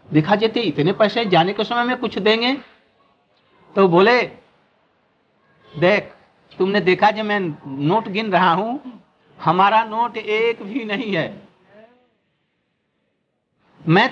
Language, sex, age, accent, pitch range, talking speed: Hindi, male, 60-79, native, 205-245 Hz, 120 wpm